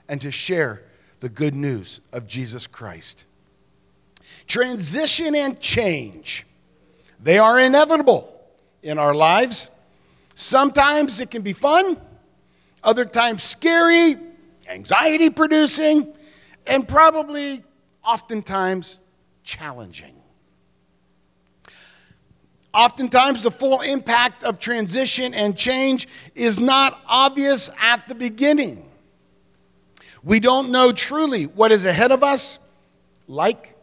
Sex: male